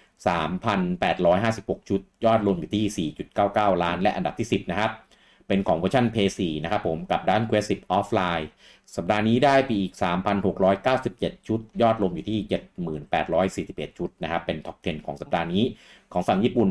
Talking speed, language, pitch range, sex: 45 wpm, English, 90-115 Hz, male